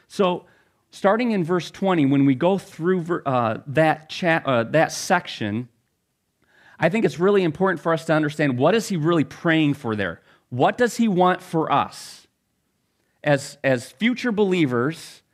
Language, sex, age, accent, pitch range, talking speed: English, male, 30-49, American, 115-160 Hz, 160 wpm